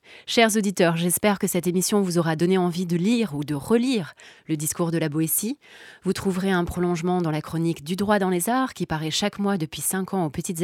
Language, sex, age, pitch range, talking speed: French, female, 30-49, 165-205 Hz, 230 wpm